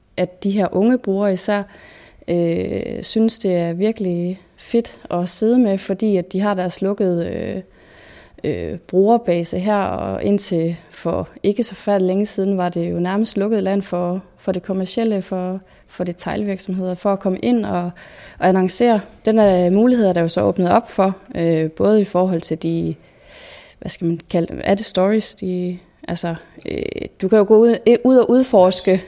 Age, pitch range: 20-39, 175-210 Hz